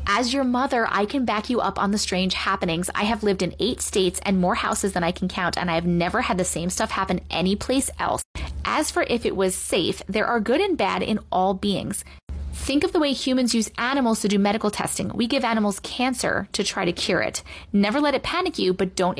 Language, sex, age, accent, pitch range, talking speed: English, female, 20-39, American, 185-240 Hz, 240 wpm